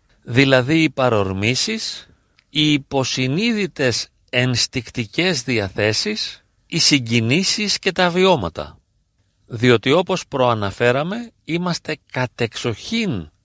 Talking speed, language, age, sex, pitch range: 75 wpm, Greek, 40-59, male, 105-140 Hz